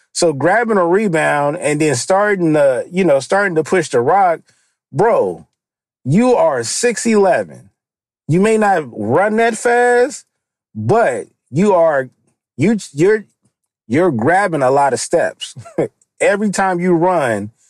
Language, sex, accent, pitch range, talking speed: English, male, American, 145-215 Hz, 140 wpm